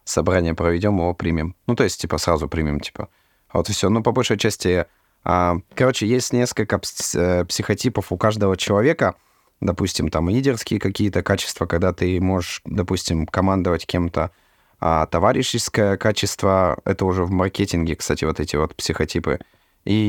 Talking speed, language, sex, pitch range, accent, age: 155 wpm, Russian, male, 85-105 Hz, native, 30-49